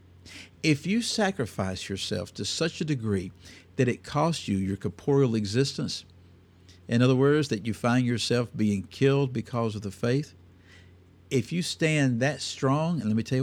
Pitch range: 95-125 Hz